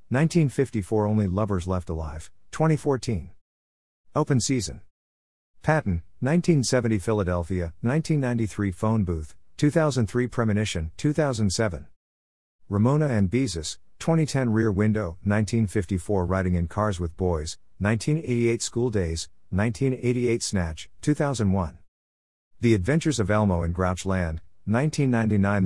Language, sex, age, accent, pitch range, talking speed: English, male, 50-69, American, 90-120 Hz, 100 wpm